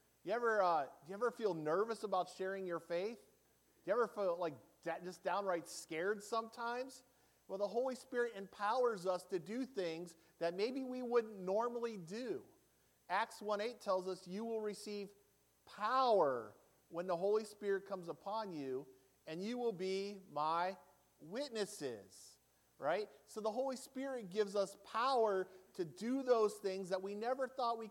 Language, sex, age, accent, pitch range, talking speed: English, male, 40-59, American, 145-215 Hz, 155 wpm